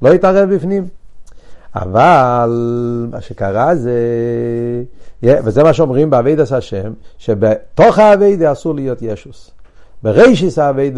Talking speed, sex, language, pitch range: 105 wpm, male, Hebrew, 120-160 Hz